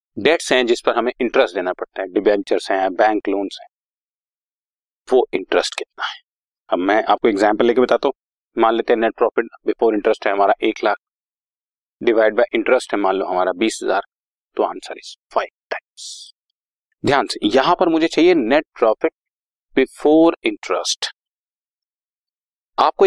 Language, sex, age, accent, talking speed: Hindi, male, 40-59, native, 130 wpm